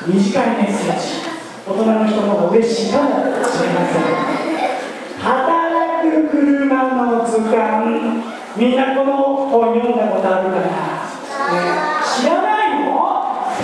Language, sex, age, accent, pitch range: Japanese, male, 40-59, native, 225-310 Hz